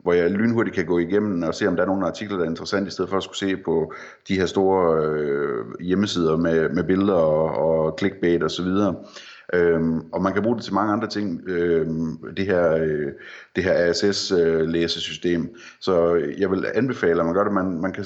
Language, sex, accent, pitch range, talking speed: Danish, male, native, 85-105 Hz, 215 wpm